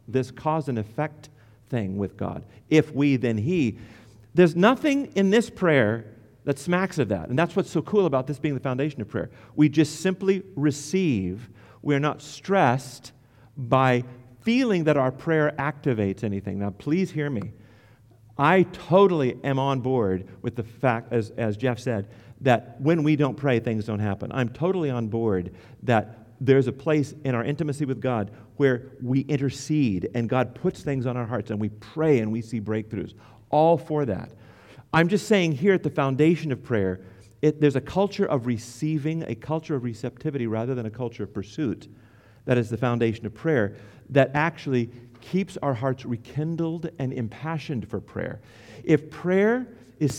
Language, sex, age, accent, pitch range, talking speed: English, male, 50-69, American, 115-150 Hz, 175 wpm